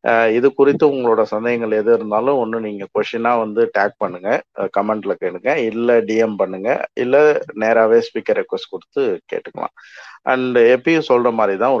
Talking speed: 140 wpm